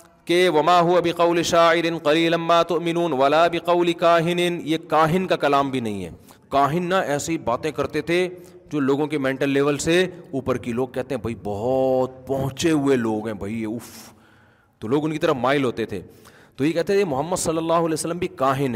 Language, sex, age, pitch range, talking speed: Urdu, male, 40-59, 140-185 Hz, 200 wpm